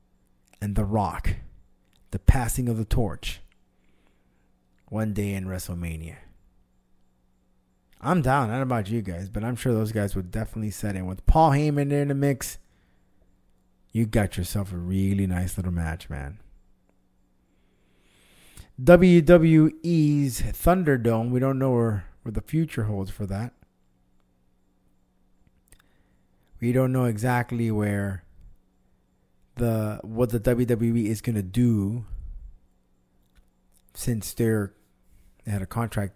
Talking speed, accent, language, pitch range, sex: 120 wpm, American, English, 90-125 Hz, male